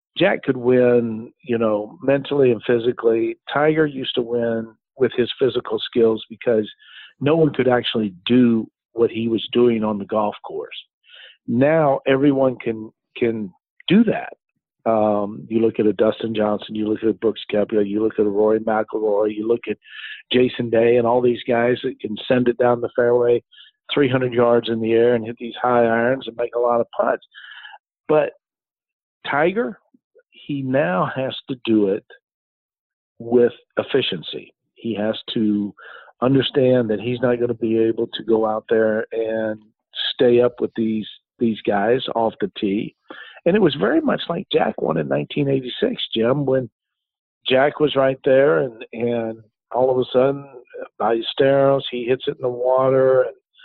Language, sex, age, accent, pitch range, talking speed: English, male, 50-69, American, 110-130 Hz, 175 wpm